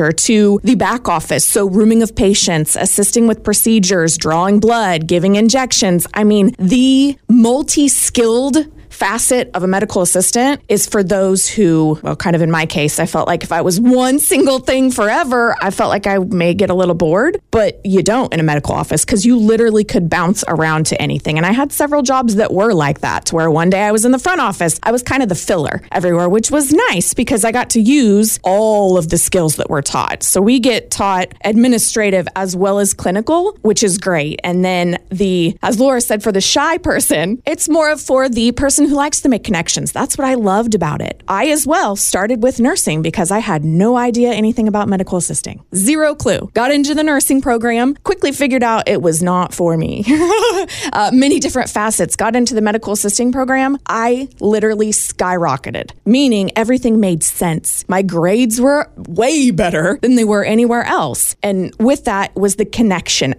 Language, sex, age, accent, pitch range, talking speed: English, female, 20-39, American, 180-250 Hz, 200 wpm